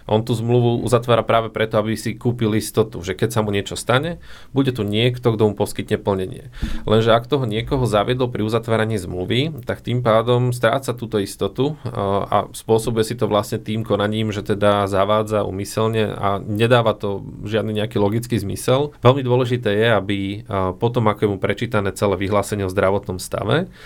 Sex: male